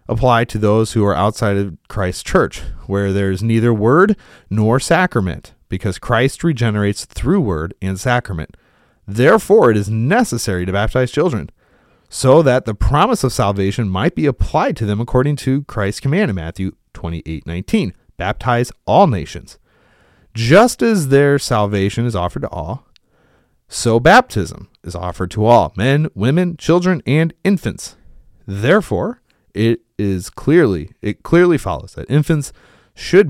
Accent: American